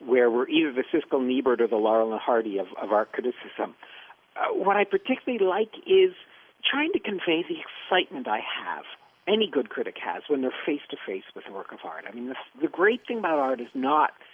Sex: male